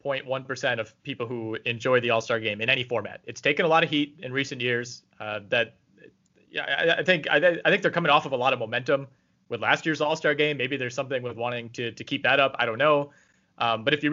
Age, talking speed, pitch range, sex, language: 30-49, 250 wpm, 120-145 Hz, male, English